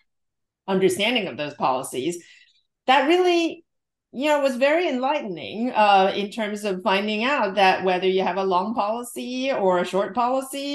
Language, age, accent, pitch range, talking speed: English, 40-59, American, 170-210 Hz, 155 wpm